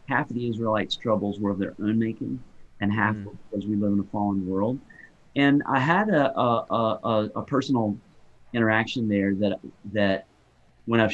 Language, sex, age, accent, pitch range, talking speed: English, male, 30-49, American, 100-120 Hz, 185 wpm